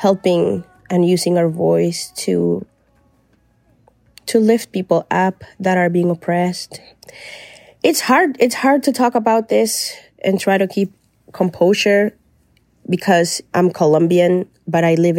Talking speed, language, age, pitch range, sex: 130 wpm, English, 20-39, 165-195 Hz, female